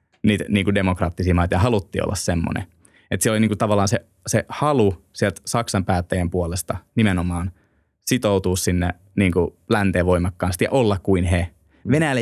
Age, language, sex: 20-39, Finnish, male